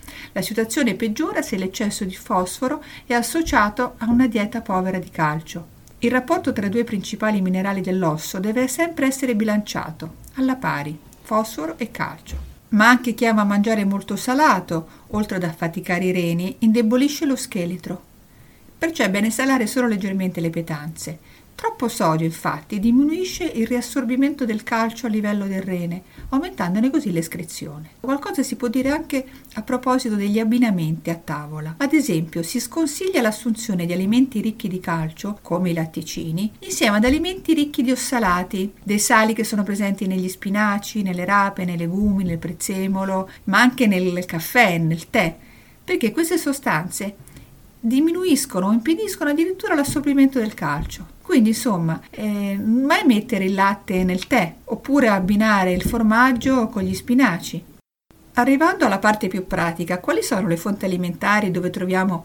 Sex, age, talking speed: female, 50-69, 150 wpm